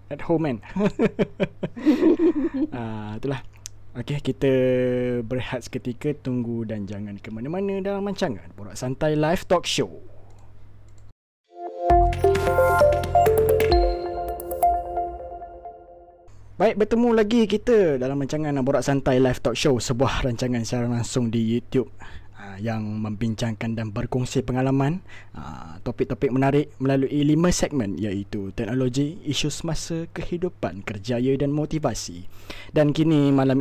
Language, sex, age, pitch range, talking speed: Malay, male, 20-39, 105-145 Hz, 105 wpm